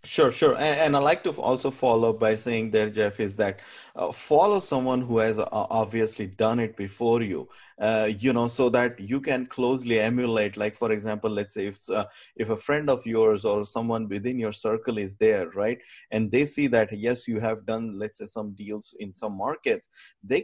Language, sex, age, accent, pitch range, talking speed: English, male, 20-39, Indian, 105-125 Hz, 195 wpm